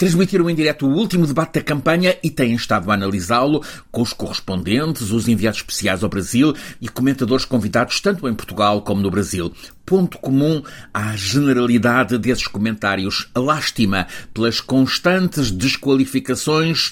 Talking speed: 140 wpm